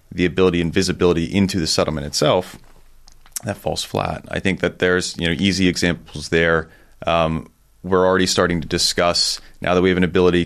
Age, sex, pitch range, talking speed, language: 30-49, male, 80-90 Hz, 185 wpm, English